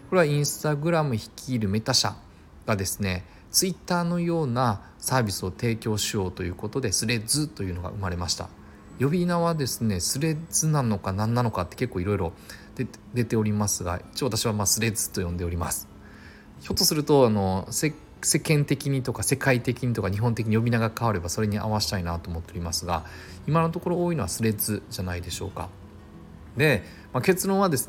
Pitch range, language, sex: 95-130 Hz, Japanese, male